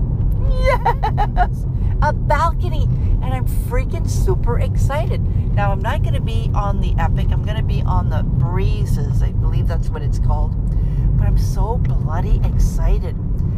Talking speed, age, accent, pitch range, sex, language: 155 wpm, 60-79, American, 95-115 Hz, female, English